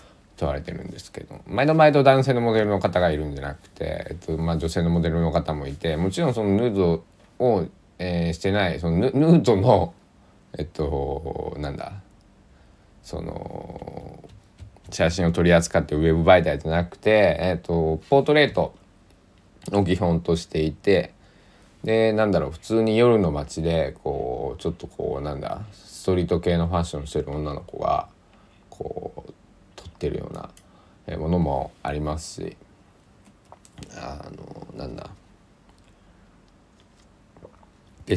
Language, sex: Japanese, male